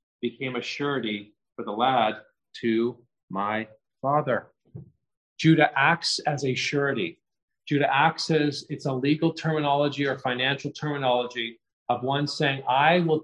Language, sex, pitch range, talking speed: English, male, 130-165 Hz, 130 wpm